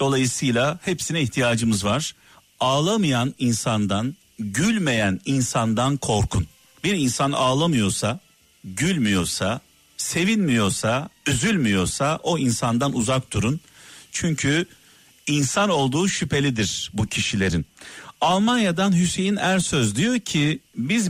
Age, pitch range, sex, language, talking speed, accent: 50-69, 120-165 Hz, male, Turkish, 90 wpm, native